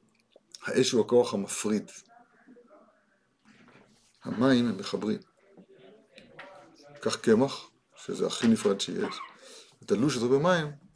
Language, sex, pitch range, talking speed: Hebrew, male, 130-205 Hz, 95 wpm